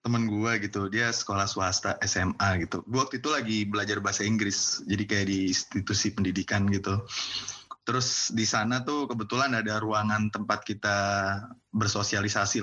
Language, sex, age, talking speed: Indonesian, male, 20-39, 145 wpm